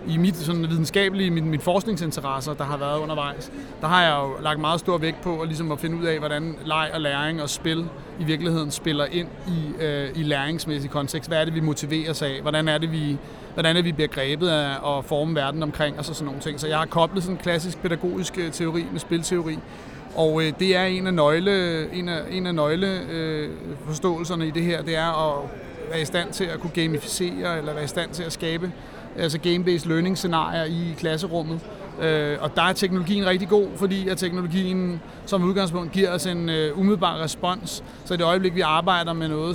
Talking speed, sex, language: 210 wpm, male, Danish